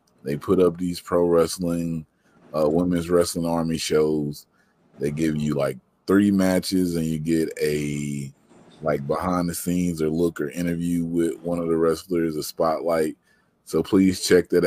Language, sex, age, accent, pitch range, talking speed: English, male, 30-49, American, 85-100 Hz, 165 wpm